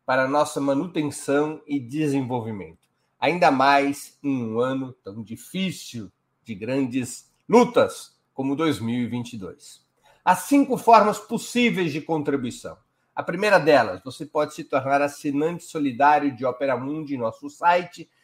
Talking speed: 120 wpm